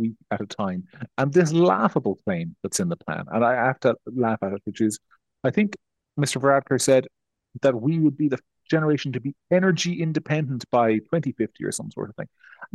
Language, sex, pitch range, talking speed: English, male, 105-150 Hz, 205 wpm